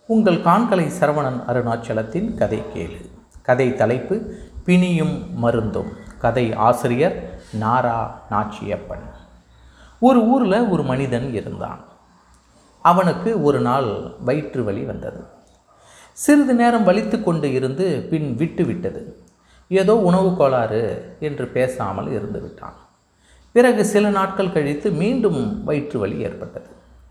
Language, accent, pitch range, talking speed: Tamil, native, 115-185 Hz, 100 wpm